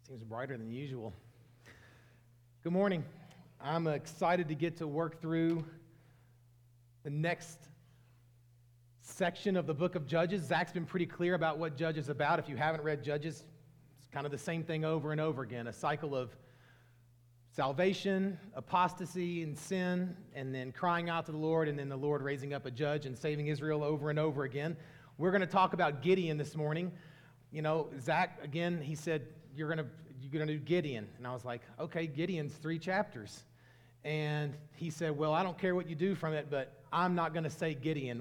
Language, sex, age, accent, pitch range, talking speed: English, male, 40-59, American, 135-170 Hz, 190 wpm